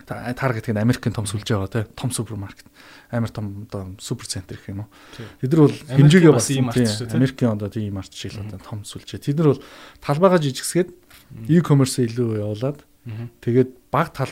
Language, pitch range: Korean, 110-140 Hz